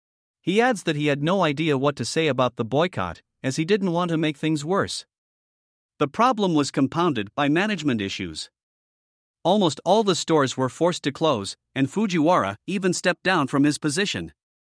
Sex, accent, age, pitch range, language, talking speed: male, American, 50-69, 130-180 Hz, English, 180 wpm